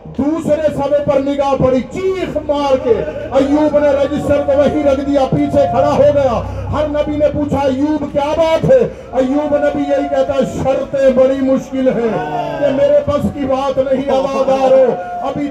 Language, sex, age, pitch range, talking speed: Urdu, male, 50-69, 255-290 Hz, 115 wpm